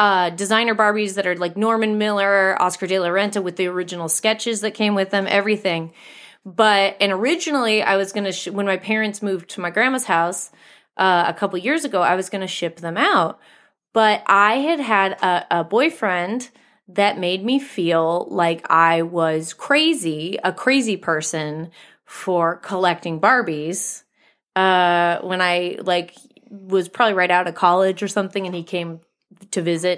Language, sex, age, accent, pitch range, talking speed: English, female, 30-49, American, 180-230 Hz, 165 wpm